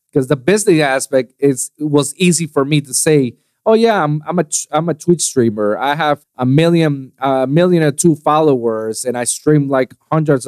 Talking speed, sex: 200 wpm, male